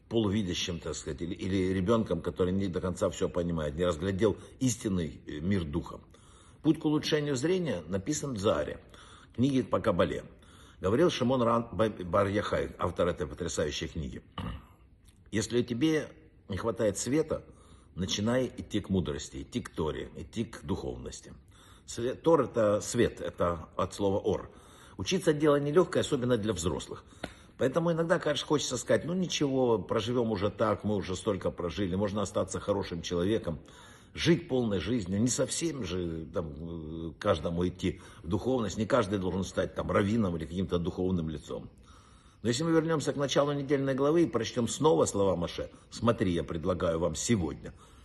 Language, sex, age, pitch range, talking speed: Russian, male, 60-79, 90-130 Hz, 150 wpm